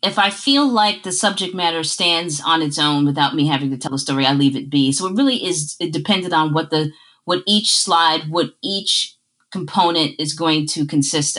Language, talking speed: English, 215 wpm